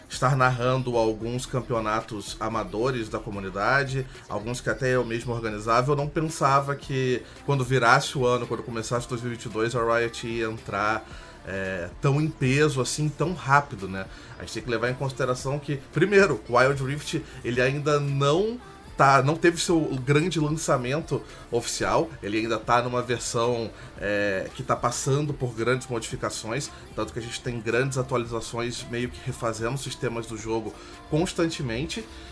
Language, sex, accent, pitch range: Portuguese, male, Brazilian, 115-145 Hz